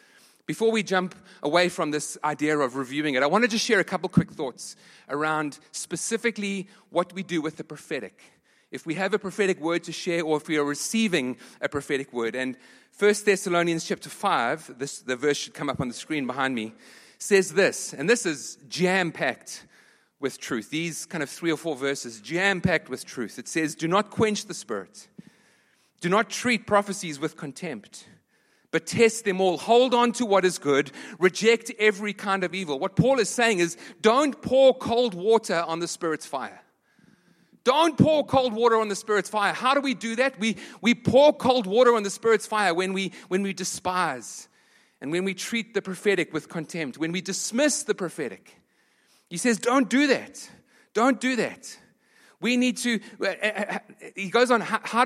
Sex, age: male, 30-49